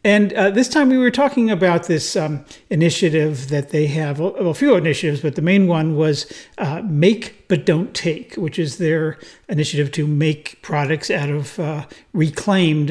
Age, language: 50-69, English